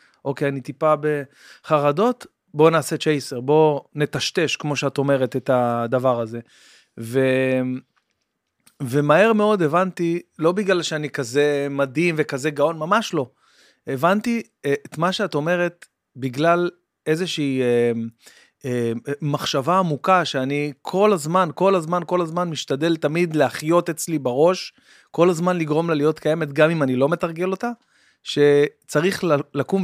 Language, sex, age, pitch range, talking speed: Hebrew, male, 30-49, 140-175 Hz, 130 wpm